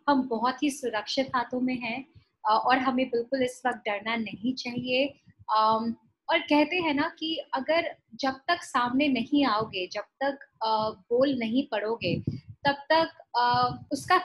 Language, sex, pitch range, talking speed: Hindi, female, 220-285 Hz, 145 wpm